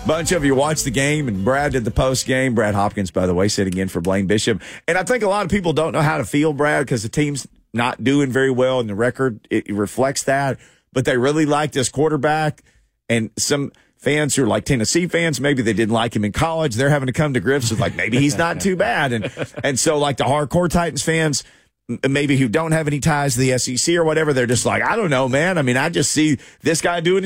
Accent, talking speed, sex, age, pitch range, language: American, 250 wpm, male, 40-59, 100-155 Hz, English